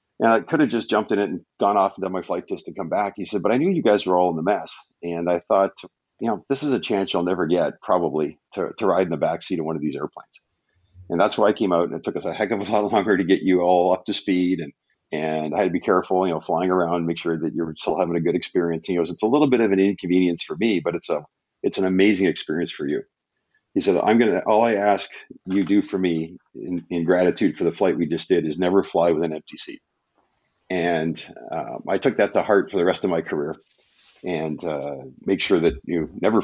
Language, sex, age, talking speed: English, male, 50-69, 275 wpm